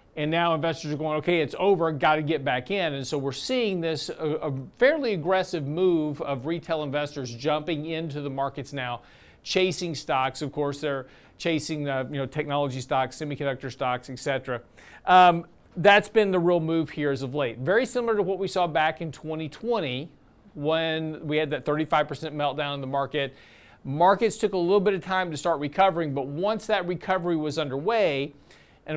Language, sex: English, male